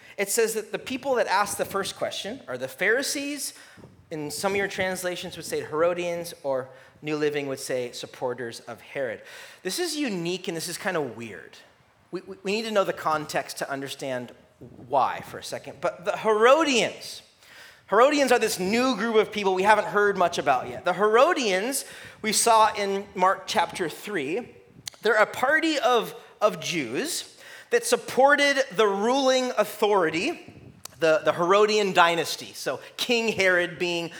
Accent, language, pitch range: American, English, 165-230 Hz